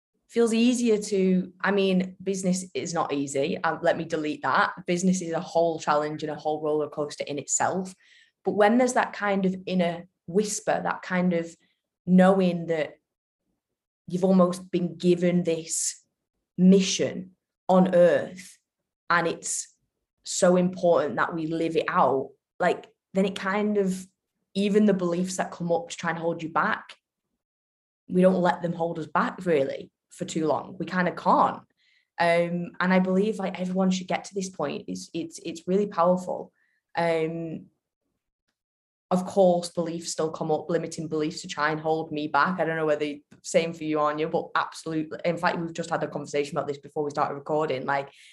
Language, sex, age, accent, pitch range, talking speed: English, female, 20-39, British, 155-185 Hz, 180 wpm